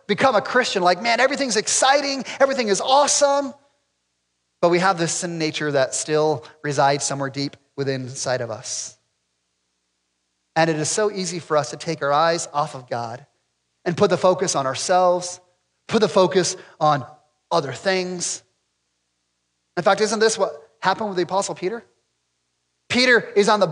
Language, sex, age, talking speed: English, male, 30-49, 165 wpm